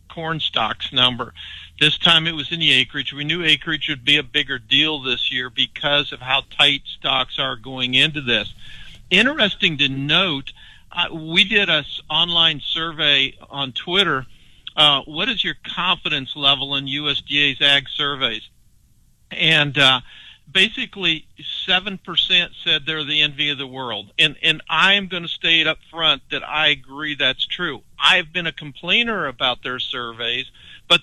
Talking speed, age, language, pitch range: 160 wpm, 50-69, English, 135-175 Hz